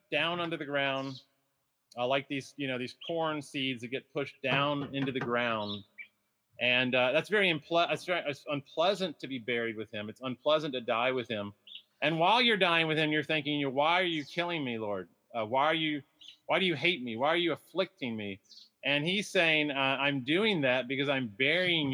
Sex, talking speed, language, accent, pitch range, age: male, 215 wpm, English, American, 125-165 Hz, 30-49